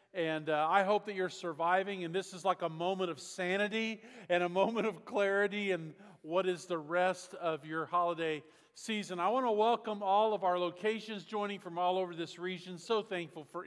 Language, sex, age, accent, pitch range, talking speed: English, male, 40-59, American, 165-205 Hz, 200 wpm